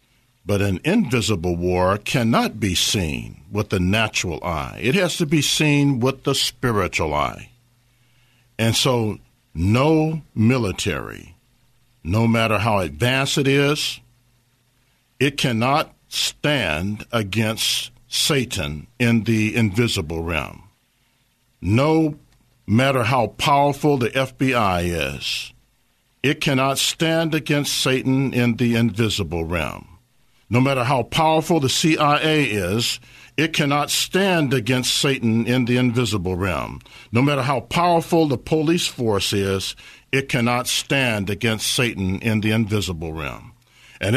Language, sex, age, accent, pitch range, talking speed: English, male, 60-79, American, 105-135 Hz, 120 wpm